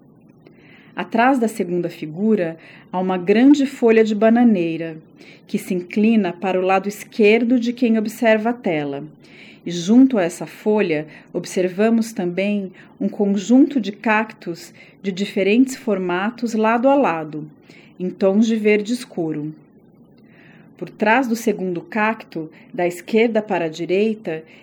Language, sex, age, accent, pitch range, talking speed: Portuguese, female, 40-59, Brazilian, 175-230 Hz, 130 wpm